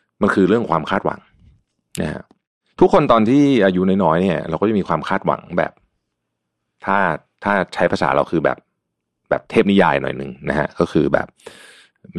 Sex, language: male, Thai